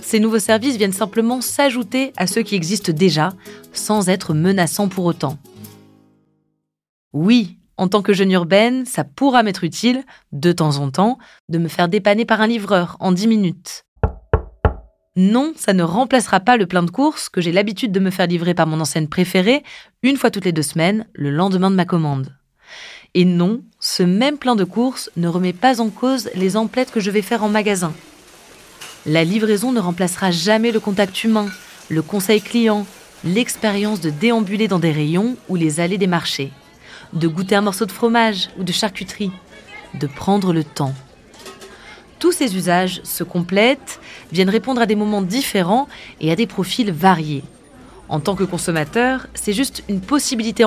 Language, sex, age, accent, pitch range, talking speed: French, female, 20-39, French, 175-230 Hz, 180 wpm